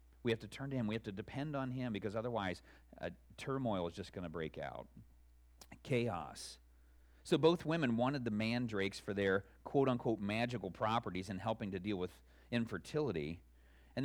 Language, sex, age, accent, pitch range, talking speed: English, male, 40-59, American, 90-130 Hz, 175 wpm